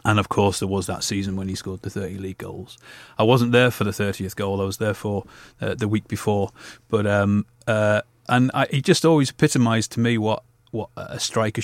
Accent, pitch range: British, 100-115 Hz